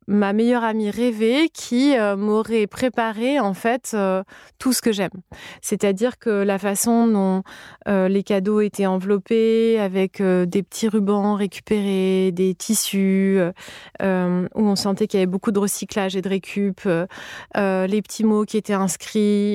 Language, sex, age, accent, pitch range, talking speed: French, female, 20-39, French, 190-230 Hz, 165 wpm